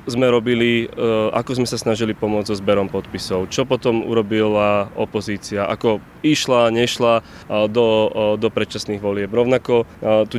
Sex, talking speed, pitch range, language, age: male, 135 wpm, 115-135 Hz, Slovak, 20-39